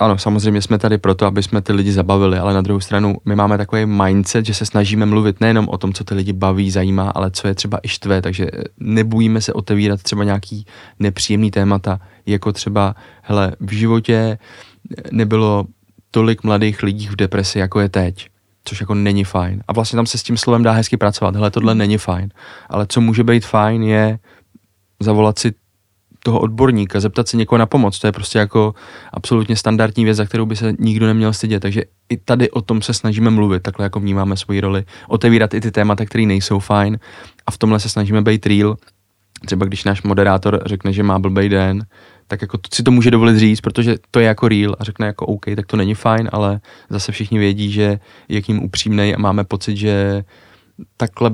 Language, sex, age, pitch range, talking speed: Czech, male, 20-39, 100-110 Hz, 205 wpm